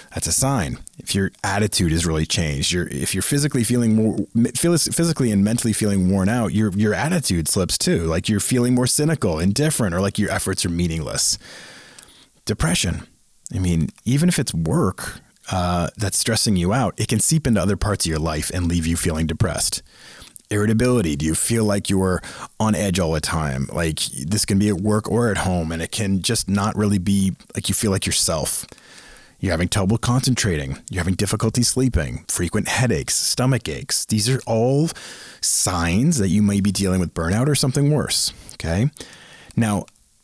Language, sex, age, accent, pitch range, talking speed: English, male, 30-49, American, 90-115 Hz, 185 wpm